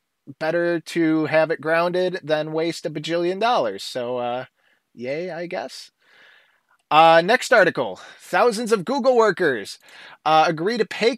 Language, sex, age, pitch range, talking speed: English, male, 20-39, 135-175 Hz, 140 wpm